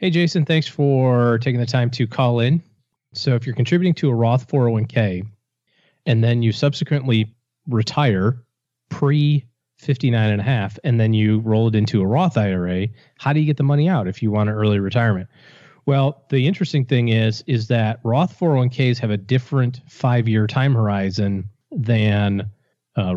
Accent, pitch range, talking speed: American, 105-135 Hz, 175 wpm